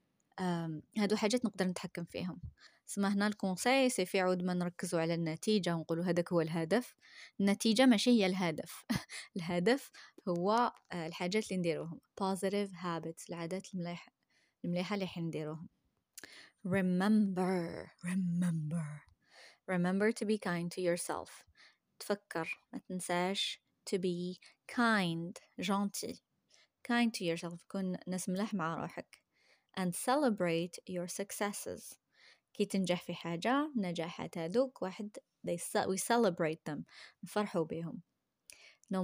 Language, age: Arabic, 20-39